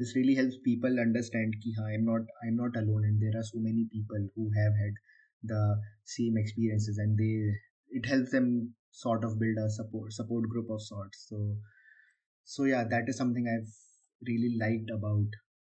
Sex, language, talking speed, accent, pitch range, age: male, English, 185 wpm, Indian, 110-125 Hz, 20-39